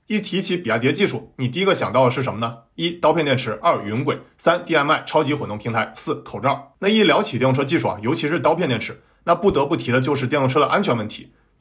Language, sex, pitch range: Chinese, male, 125-165 Hz